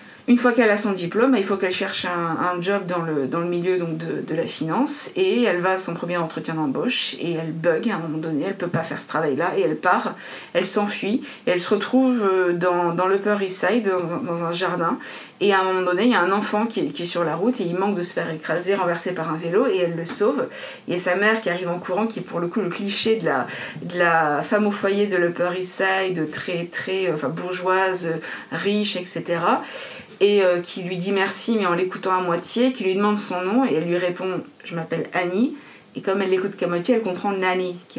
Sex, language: female, French